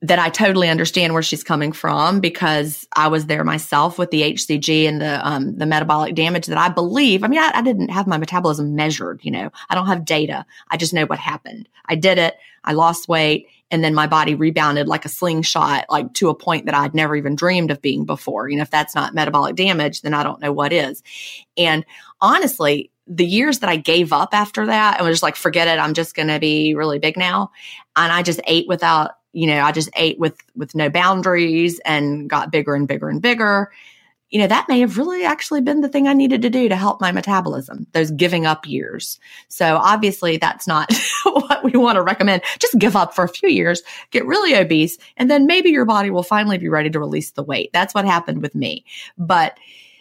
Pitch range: 155-190 Hz